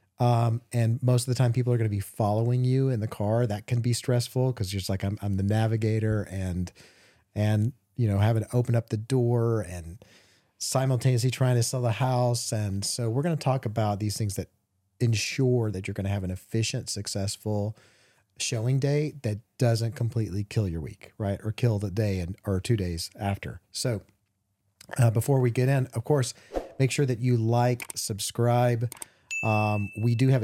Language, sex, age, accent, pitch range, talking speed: English, male, 40-59, American, 105-125 Hz, 195 wpm